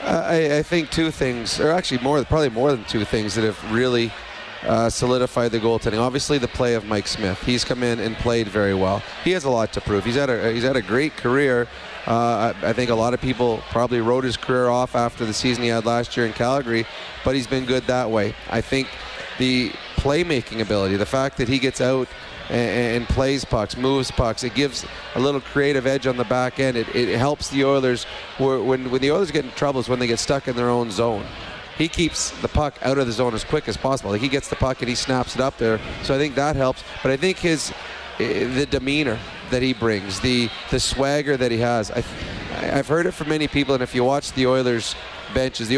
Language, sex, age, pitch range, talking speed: English, male, 30-49, 115-135 Hz, 235 wpm